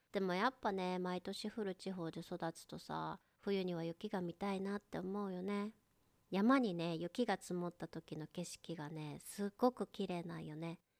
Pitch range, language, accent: 175-220 Hz, Japanese, native